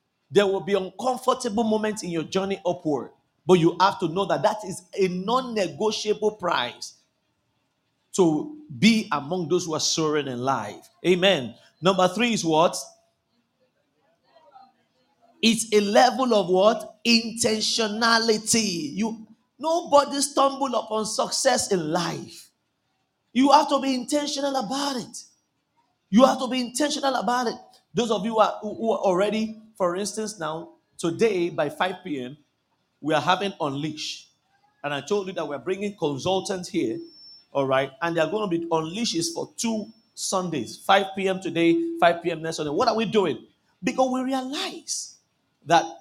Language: English